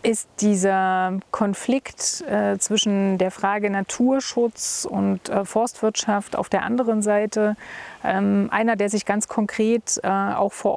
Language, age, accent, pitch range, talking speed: German, 30-49, German, 200-235 Hz, 135 wpm